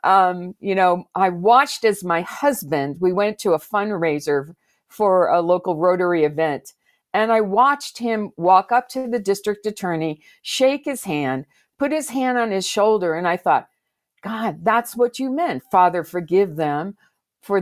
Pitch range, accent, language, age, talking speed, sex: 170-245 Hz, American, English, 50-69, 165 wpm, female